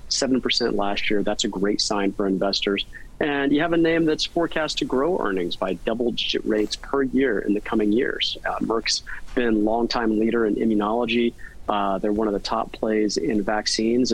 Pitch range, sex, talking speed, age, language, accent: 105-130 Hz, male, 195 wpm, 30-49, English, American